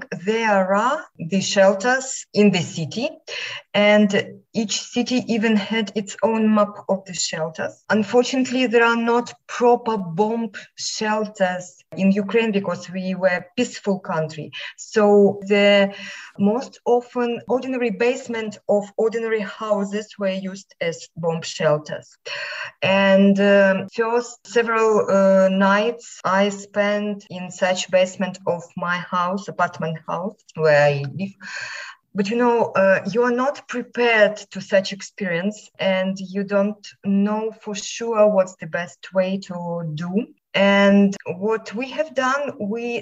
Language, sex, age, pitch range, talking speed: English, female, 20-39, 190-225 Hz, 135 wpm